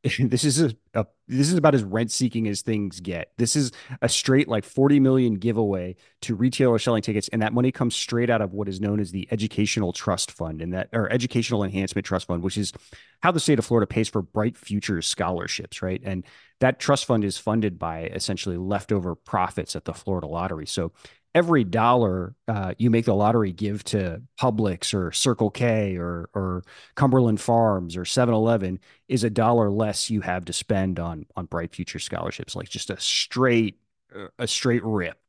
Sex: male